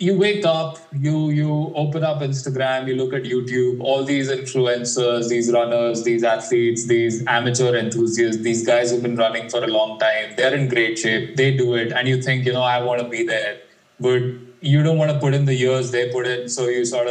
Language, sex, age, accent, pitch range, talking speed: English, male, 20-39, Indian, 125-155 Hz, 220 wpm